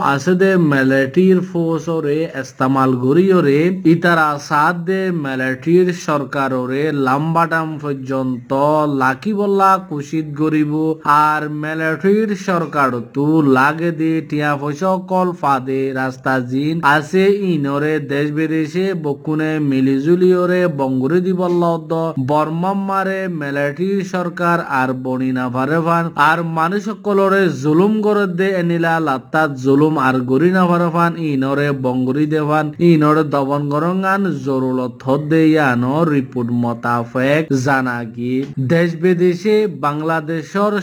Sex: male